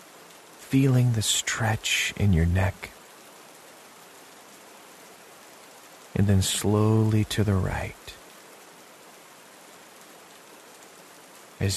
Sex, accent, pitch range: male, American, 95-120 Hz